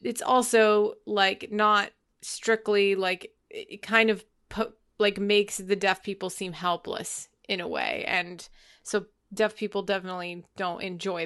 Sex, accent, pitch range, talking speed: female, American, 190-215 Hz, 145 wpm